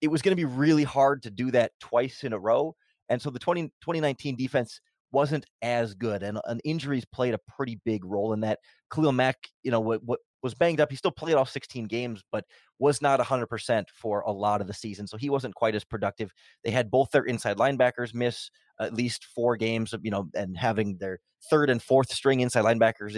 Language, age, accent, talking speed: English, 30-49, American, 235 wpm